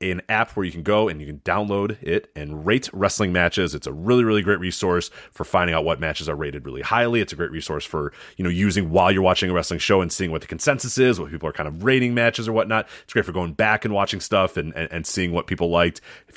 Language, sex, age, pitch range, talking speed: English, male, 30-49, 90-120 Hz, 275 wpm